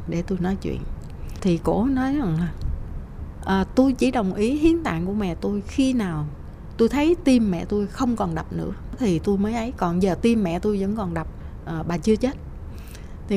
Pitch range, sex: 180-250 Hz, female